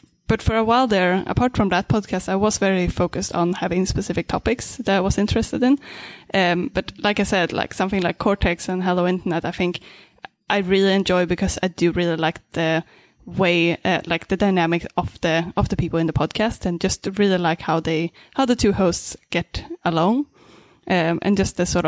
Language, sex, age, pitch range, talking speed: English, female, 10-29, 175-200 Hz, 205 wpm